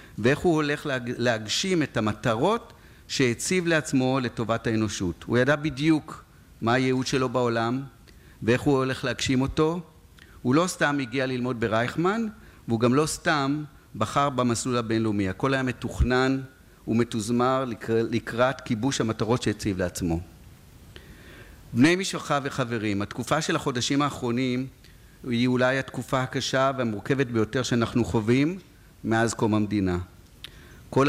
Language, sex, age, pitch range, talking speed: Hebrew, male, 50-69, 110-135 Hz, 120 wpm